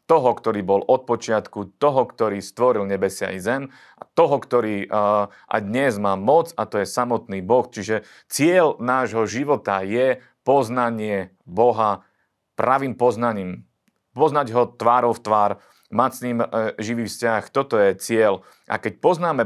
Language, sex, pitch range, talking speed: Slovak, male, 105-130 Hz, 140 wpm